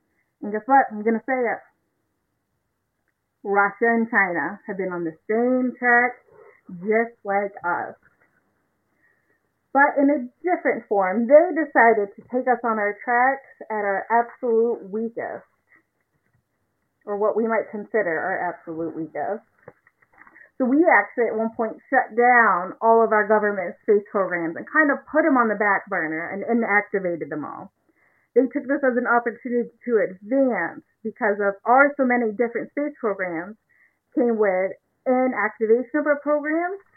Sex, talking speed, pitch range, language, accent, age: female, 155 wpm, 205-265 Hz, English, American, 30-49